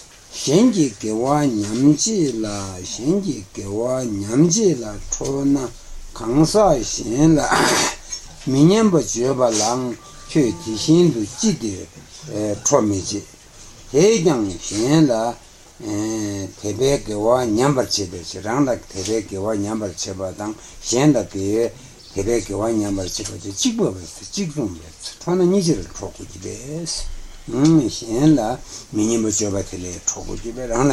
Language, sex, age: Italian, male, 60-79